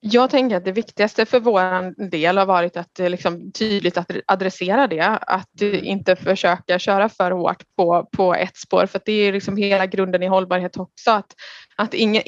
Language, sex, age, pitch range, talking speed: Swedish, female, 20-39, 175-200 Hz, 190 wpm